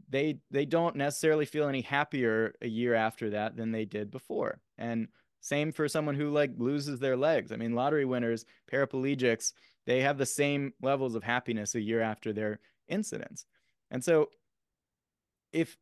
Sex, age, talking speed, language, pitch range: male, 20-39, 165 wpm, English, 115-145 Hz